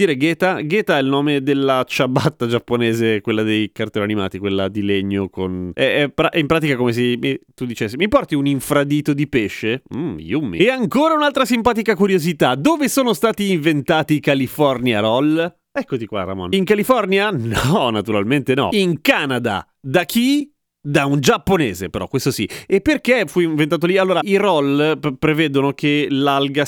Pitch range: 120-165 Hz